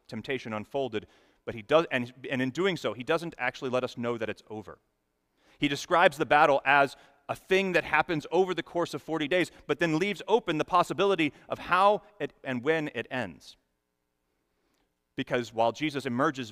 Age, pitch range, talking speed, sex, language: 30-49, 110-155 Hz, 185 wpm, male, English